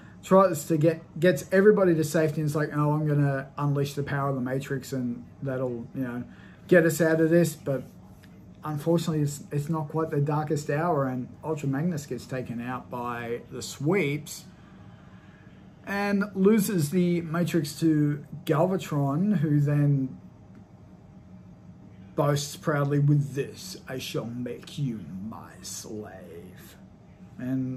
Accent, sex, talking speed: Australian, male, 145 wpm